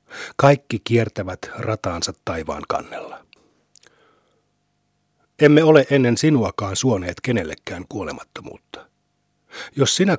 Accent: native